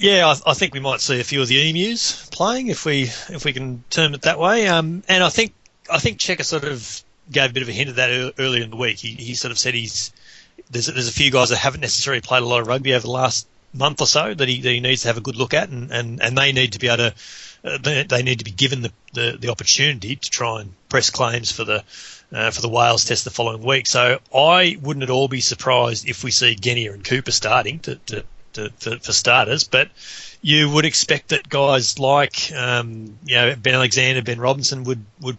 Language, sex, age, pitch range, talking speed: English, male, 30-49, 120-140 Hz, 255 wpm